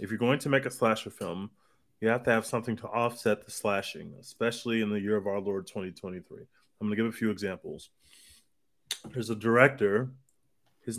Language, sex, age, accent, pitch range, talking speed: English, male, 30-49, American, 115-135 Hz, 195 wpm